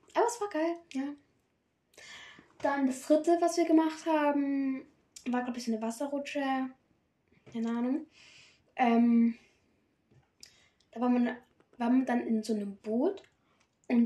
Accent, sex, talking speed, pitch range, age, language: German, female, 135 wpm, 235-310 Hz, 10-29, German